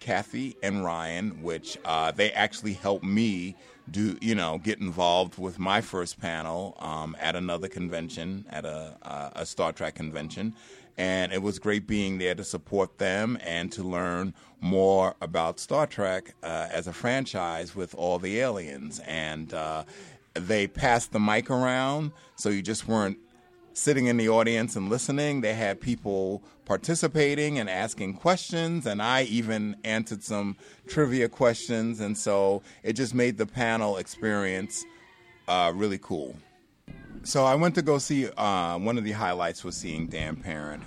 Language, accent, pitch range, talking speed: English, American, 85-115 Hz, 160 wpm